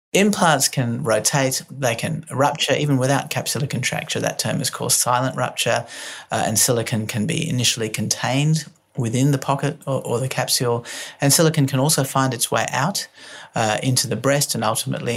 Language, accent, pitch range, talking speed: English, Australian, 120-150 Hz, 175 wpm